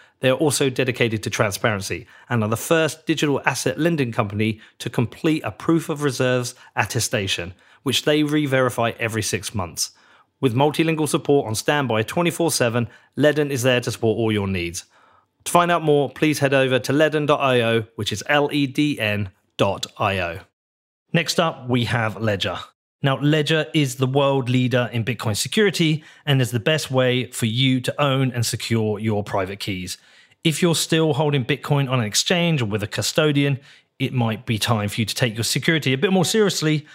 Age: 30-49